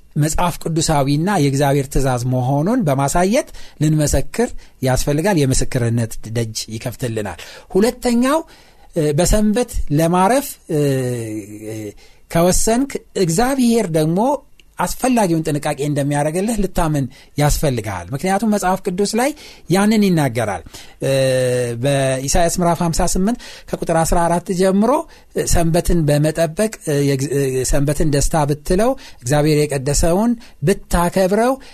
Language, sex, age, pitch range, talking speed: Amharic, male, 60-79, 135-195 Hz, 80 wpm